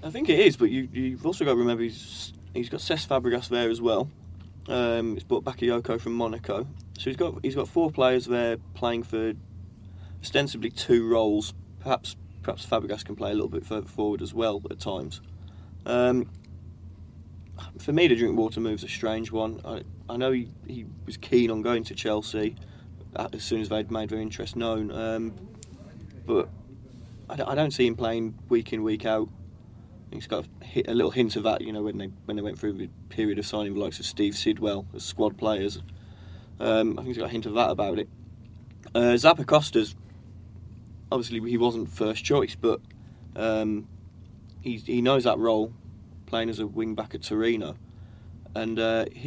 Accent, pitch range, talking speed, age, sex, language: British, 100-115 Hz, 190 wpm, 20-39, male, English